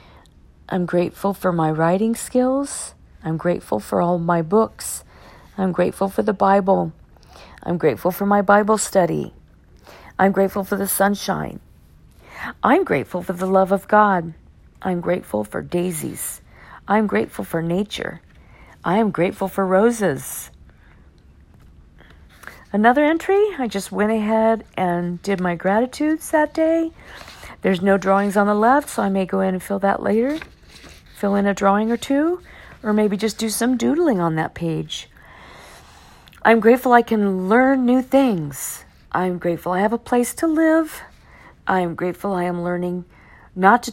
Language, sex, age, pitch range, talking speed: English, female, 50-69, 175-230 Hz, 155 wpm